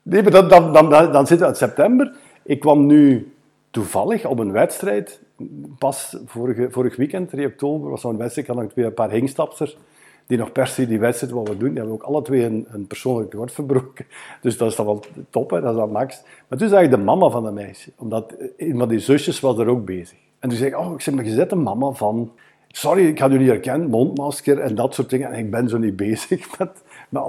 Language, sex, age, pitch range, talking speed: Dutch, male, 50-69, 115-150 Hz, 245 wpm